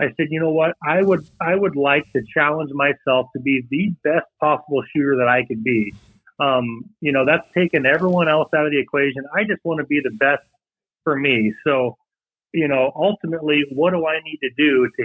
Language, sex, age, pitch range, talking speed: English, male, 30-49, 135-165 Hz, 215 wpm